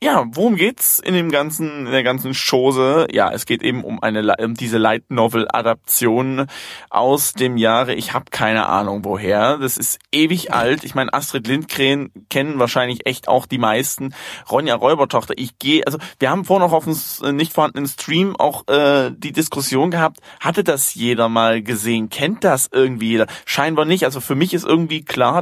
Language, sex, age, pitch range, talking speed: German, male, 20-39, 125-160 Hz, 185 wpm